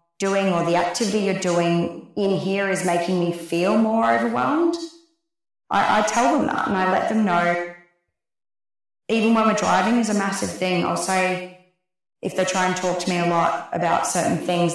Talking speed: 185 wpm